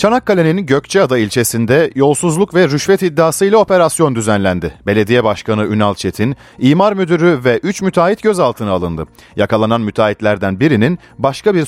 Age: 40-59